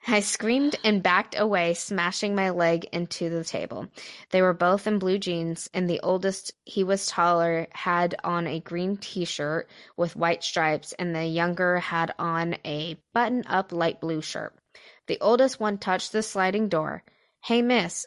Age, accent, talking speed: 20-39, American, 165 wpm